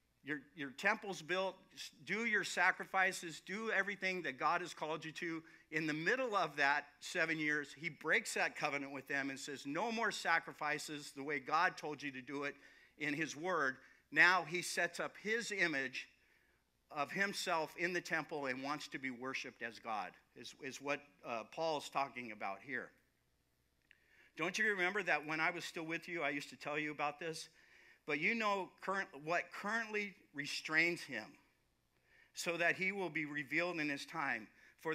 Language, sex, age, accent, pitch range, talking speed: English, male, 50-69, American, 140-180 Hz, 180 wpm